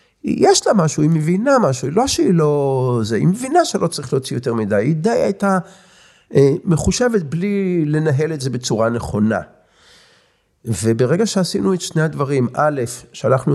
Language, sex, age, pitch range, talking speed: Hebrew, male, 50-69, 110-155 Hz, 155 wpm